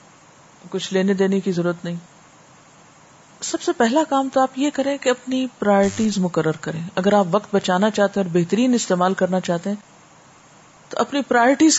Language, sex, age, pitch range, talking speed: Urdu, female, 40-59, 180-270 Hz, 175 wpm